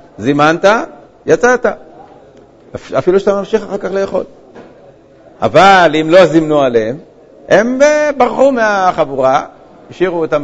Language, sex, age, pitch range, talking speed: Hebrew, male, 50-69, 150-195 Hz, 105 wpm